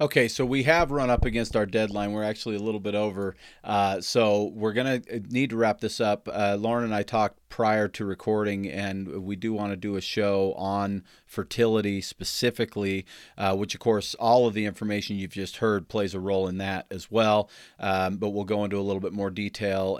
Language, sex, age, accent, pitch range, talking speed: English, male, 40-59, American, 95-110 Hz, 215 wpm